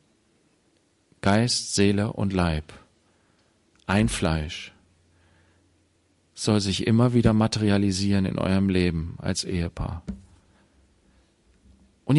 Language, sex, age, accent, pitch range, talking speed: German, male, 50-69, German, 95-140 Hz, 85 wpm